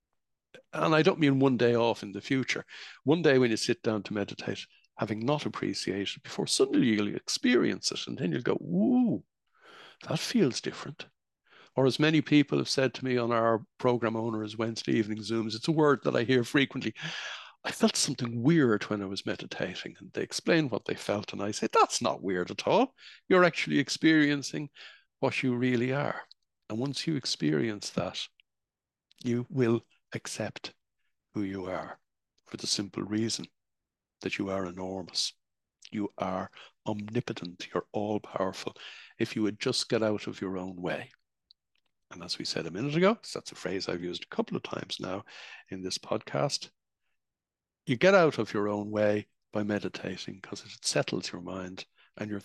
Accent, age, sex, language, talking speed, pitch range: Irish, 60-79, male, English, 180 wpm, 105-145 Hz